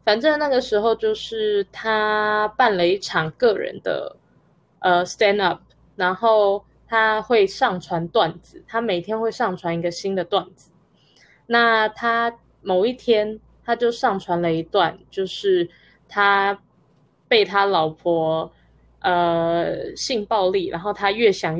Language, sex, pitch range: Chinese, female, 180-225 Hz